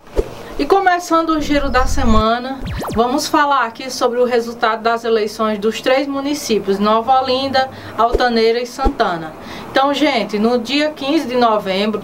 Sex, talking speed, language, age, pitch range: female, 145 wpm, Portuguese, 20-39, 215-260 Hz